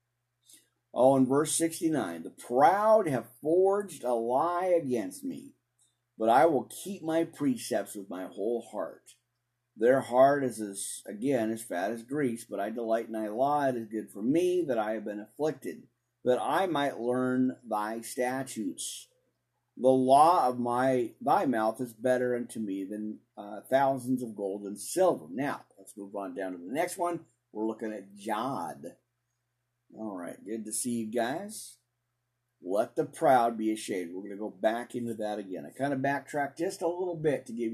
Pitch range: 115-135 Hz